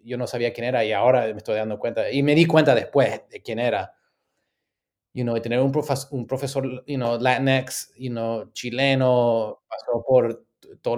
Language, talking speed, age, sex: English, 185 wpm, 20-39, male